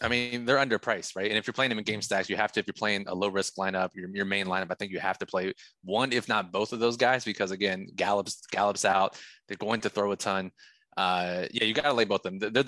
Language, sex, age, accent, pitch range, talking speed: English, male, 20-39, American, 100-120 Hz, 280 wpm